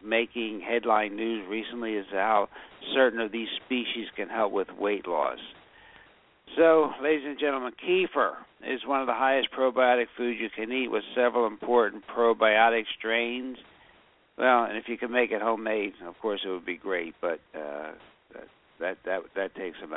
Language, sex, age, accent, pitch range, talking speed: English, male, 60-79, American, 110-135 Hz, 170 wpm